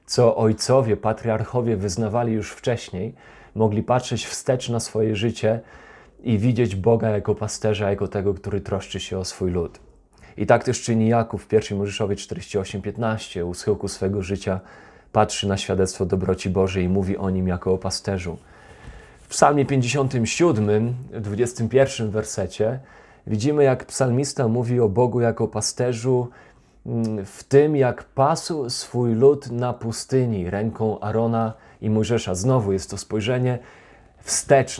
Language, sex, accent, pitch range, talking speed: Polish, male, native, 100-125 Hz, 140 wpm